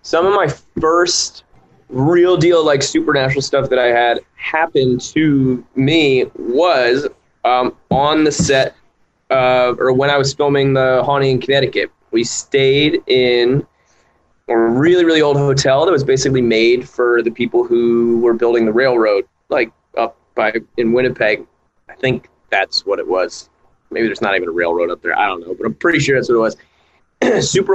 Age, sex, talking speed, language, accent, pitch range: 20-39, male, 175 wpm, English, American, 120-140 Hz